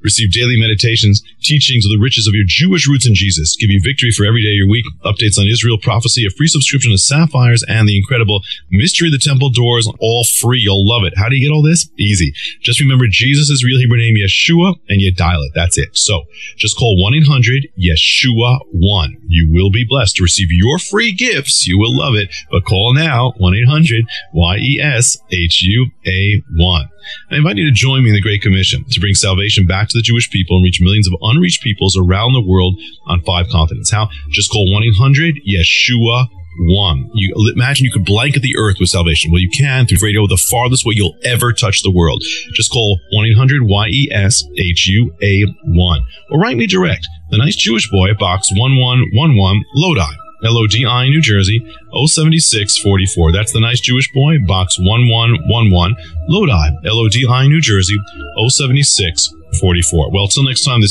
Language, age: English, 40-59